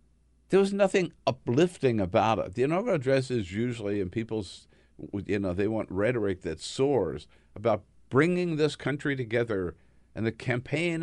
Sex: male